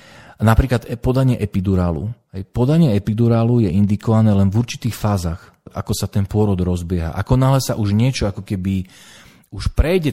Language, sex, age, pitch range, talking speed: Slovak, male, 40-59, 95-125 Hz, 150 wpm